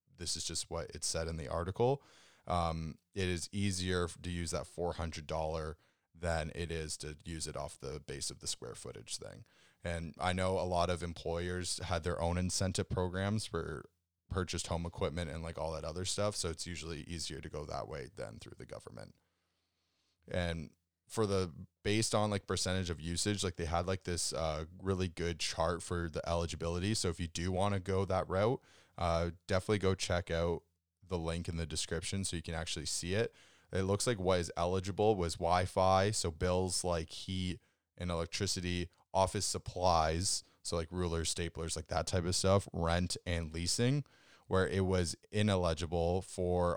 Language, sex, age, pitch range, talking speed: English, male, 20-39, 85-95 Hz, 185 wpm